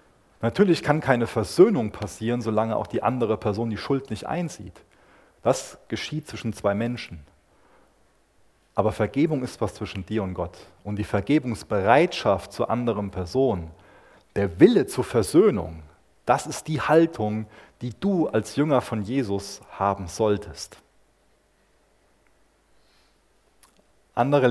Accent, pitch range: German, 95-120 Hz